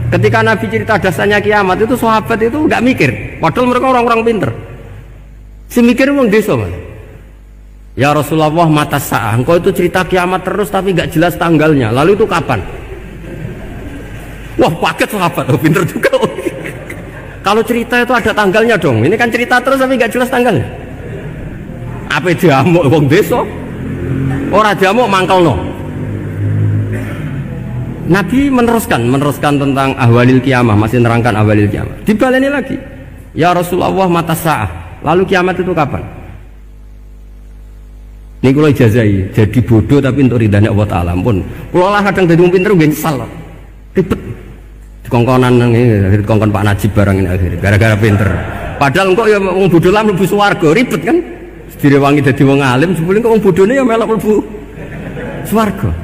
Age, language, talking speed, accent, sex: 50-69, Indonesian, 145 wpm, native, male